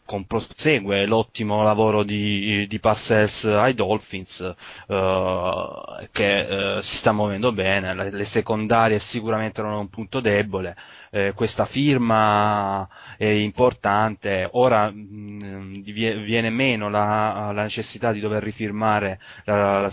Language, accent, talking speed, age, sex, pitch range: Italian, native, 125 wpm, 20-39, male, 100-110 Hz